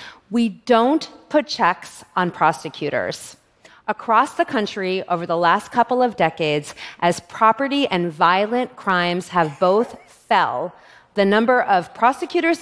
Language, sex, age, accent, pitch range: Korean, female, 30-49, American, 175-235 Hz